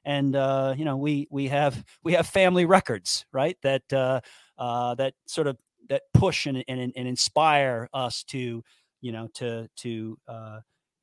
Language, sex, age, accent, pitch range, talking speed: English, male, 40-59, American, 120-155 Hz, 170 wpm